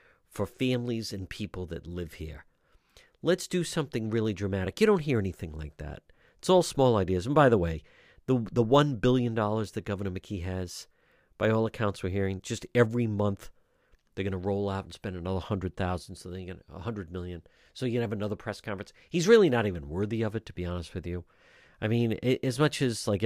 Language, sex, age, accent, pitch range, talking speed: English, male, 50-69, American, 90-120 Hz, 215 wpm